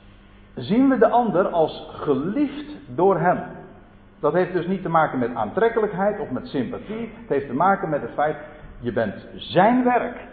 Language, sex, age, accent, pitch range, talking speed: Dutch, male, 50-69, Dutch, 130-190 Hz, 175 wpm